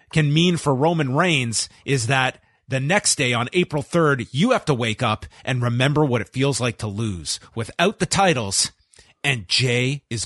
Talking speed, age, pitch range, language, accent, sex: 185 wpm, 30-49, 115-160 Hz, English, American, male